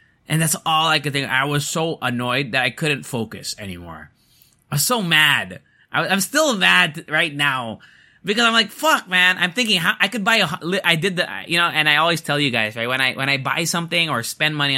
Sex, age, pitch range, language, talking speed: male, 20-39, 115-175 Hz, English, 235 wpm